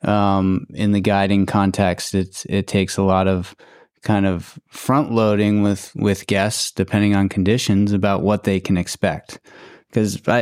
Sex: male